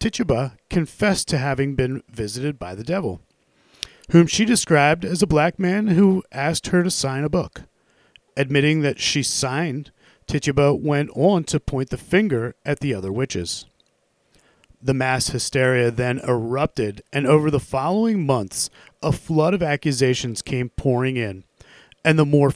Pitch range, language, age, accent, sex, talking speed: 125-160 Hz, English, 40-59, American, male, 155 wpm